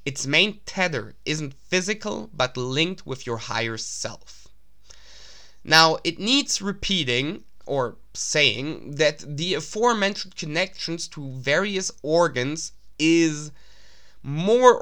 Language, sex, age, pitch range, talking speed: English, male, 20-39, 130-175 Hz, 105 wpm